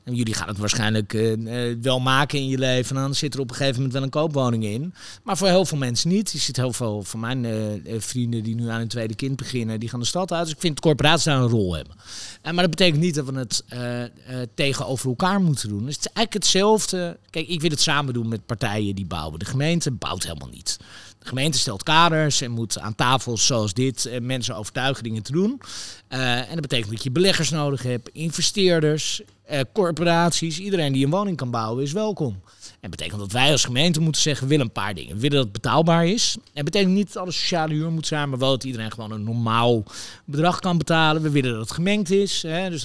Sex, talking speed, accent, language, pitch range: male, 240 wpm, Dutch, Dutch, 115-160 Hz